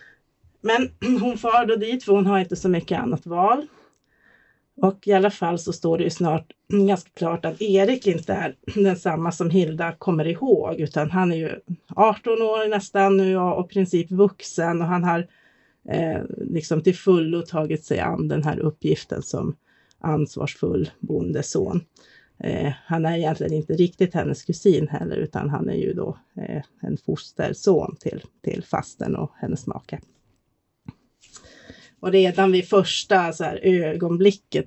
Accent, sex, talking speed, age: native, female, 160 wpm, 30-49